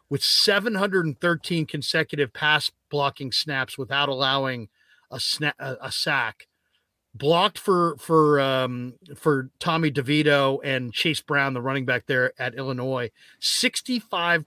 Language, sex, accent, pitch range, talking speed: English, male, American, 135-160 Hz, 120 wpm